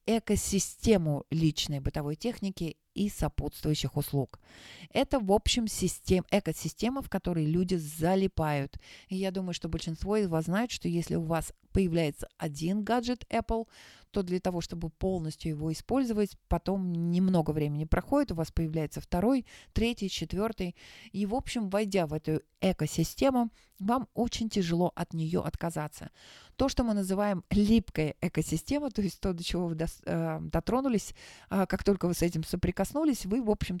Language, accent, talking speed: Russian, native, 150 wpm